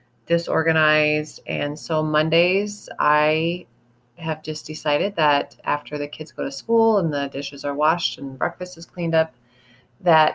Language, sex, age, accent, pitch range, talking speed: English, female, 30-49, American, 145-170 Hz, 150 wpm